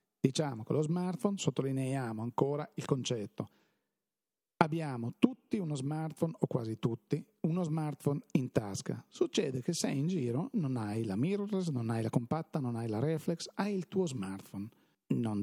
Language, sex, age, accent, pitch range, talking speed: Italian, male, 40-59, native, 130-170 Hz, 160 wpm